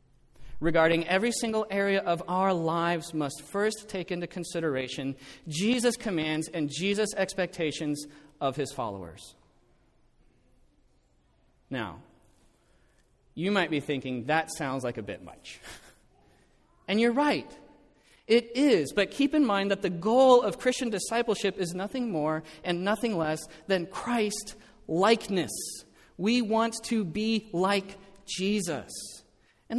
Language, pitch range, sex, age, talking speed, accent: English, 140-205 Hz, male, 30-49, 125 wpm, American